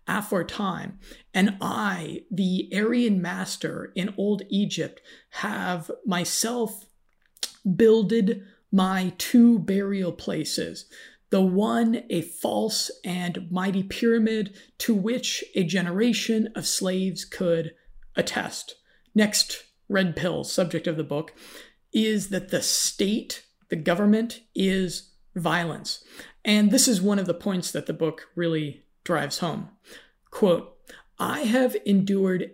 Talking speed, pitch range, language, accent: 115 wpm, 180-220 Hz, English, American